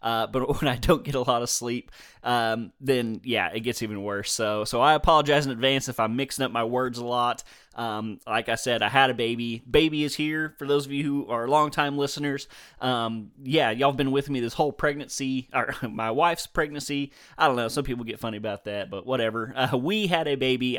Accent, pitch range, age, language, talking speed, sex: American, 115-140 Hz, 20-39, English, 230 wpm, male